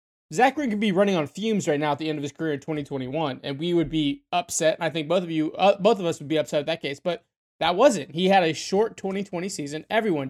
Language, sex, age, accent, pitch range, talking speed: English, male, 20-39, American, 150-195 Hz, 270 wpm